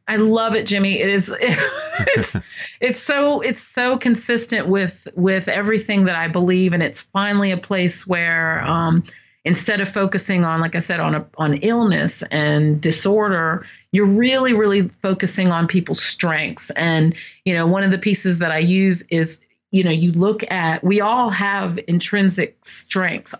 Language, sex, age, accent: English, female, 40-59, American